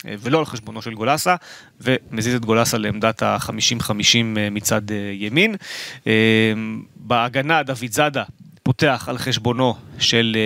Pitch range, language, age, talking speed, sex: 120-155 Hz, Hebrew, 30-49, 115 wpm, male